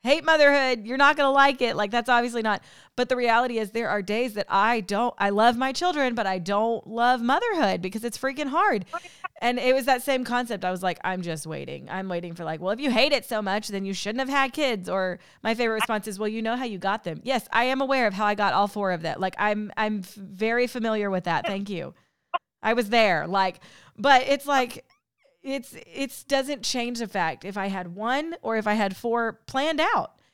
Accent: American